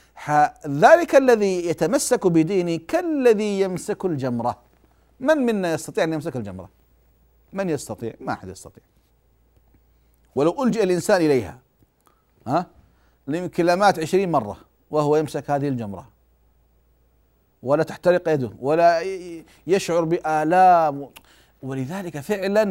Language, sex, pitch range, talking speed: Arabic, male, 115-180 Hz, 105 wpm